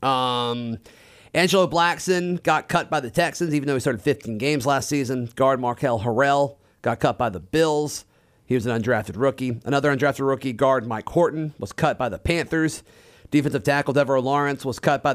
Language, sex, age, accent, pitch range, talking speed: English, male, 40-59, American, 120-155 Hz, 185 wpm